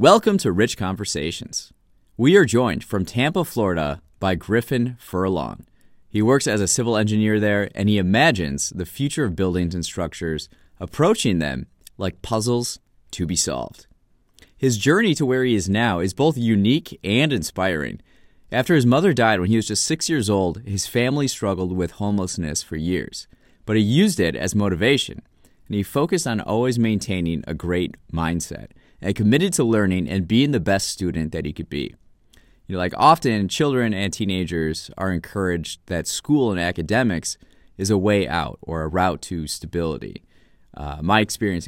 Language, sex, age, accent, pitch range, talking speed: English, male, 30-49, American, 90-125 Hz, 170 wpm